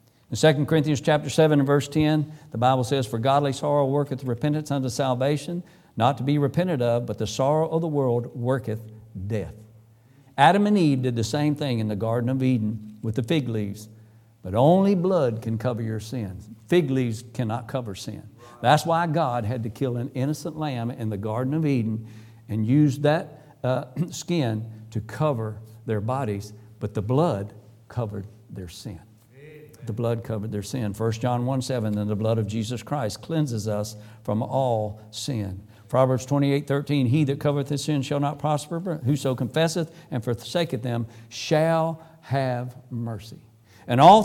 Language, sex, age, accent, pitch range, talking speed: English, male, 60-79, American, 110-150 Hz, 175 wpm